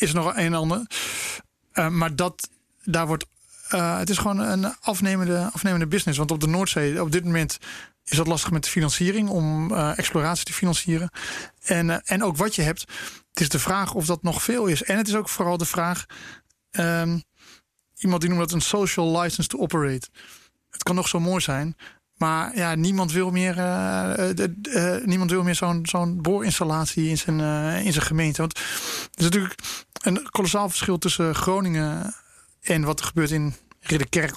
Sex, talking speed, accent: male, 195 wpm, Dutch